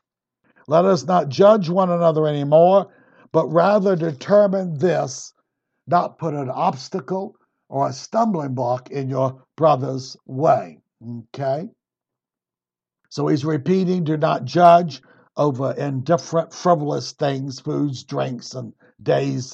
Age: 60-79